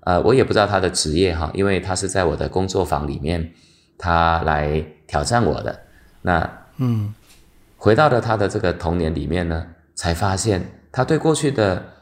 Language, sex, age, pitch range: Chinese, male, 30-49, 80-115 Hz